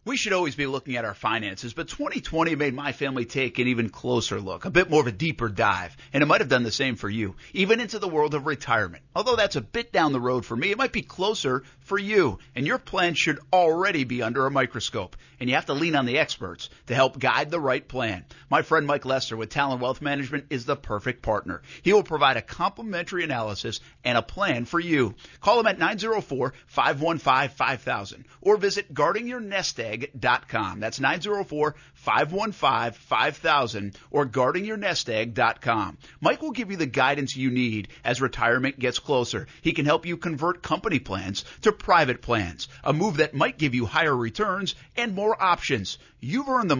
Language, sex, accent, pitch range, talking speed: English, male, American, 125-180 Hz, 195 wpm